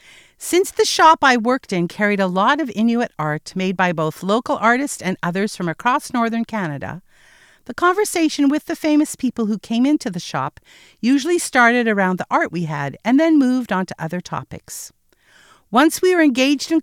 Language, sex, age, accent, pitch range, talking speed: English, female, 50-69, American, 185-290 Hz, 190 wpm